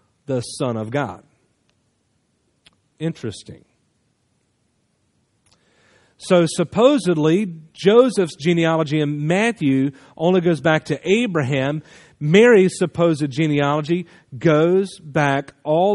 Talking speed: 85 wpm